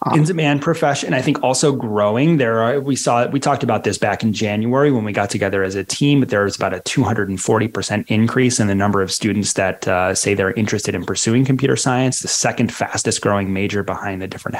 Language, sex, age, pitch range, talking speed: English, male, 30-49, 105-140 Hz, 220 wpm